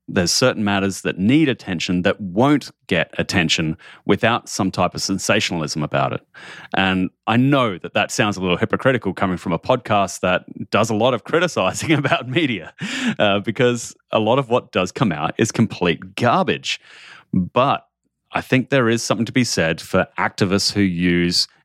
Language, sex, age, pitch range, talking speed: English, male, 30-49, 85-125 Hz, 175 wpm